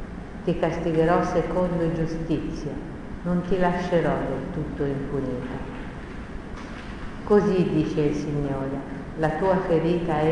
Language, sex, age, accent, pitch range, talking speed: Italian, female, 50-69, native, 145-175 Hz, 105 wpm